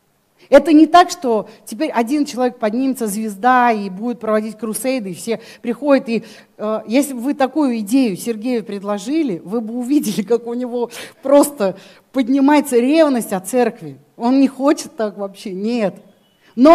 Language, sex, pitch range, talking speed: Russian, female, 215-285 Hz, 155 wpm